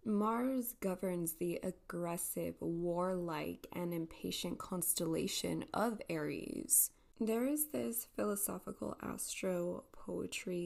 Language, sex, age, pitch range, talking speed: English, female, 20-39, 170-195 Hz, 85 wpm